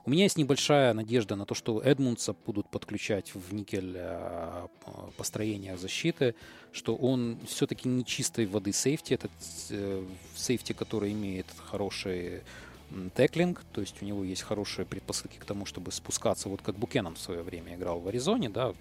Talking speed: 155 wpm